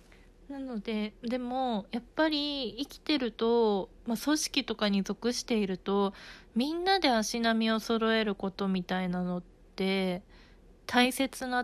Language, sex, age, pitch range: Japanese, female, 20-39, 205-275 Hz